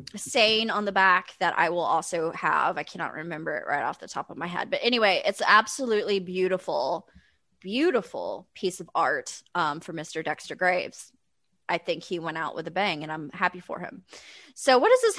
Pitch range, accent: 180-250 Hz, American